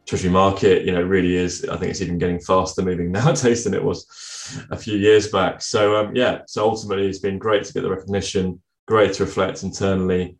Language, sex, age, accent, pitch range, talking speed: English, male, 20-39, British, 90-100 Hz, 215 wpm